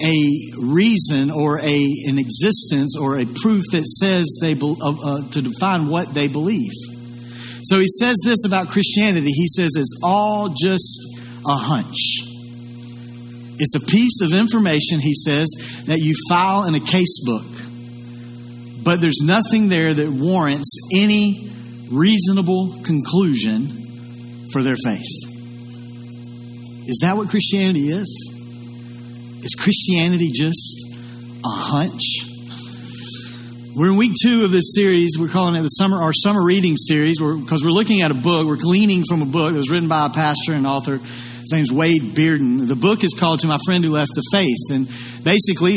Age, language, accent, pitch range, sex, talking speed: 50-69, English, American, 125-180 Hz, male, 160 wpm